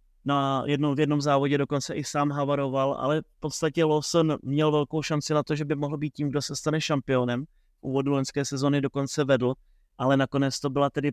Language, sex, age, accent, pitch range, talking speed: Czech, male, 20-39, native, 135-145 Hz, 200 wpm